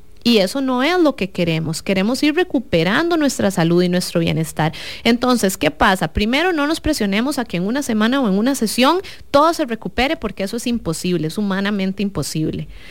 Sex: female